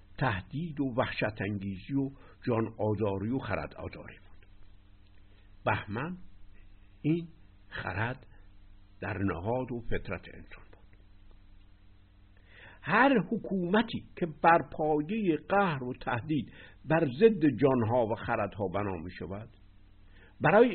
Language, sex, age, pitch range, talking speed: Persian, male, 60-79, 95-150 Hz, 100 wpm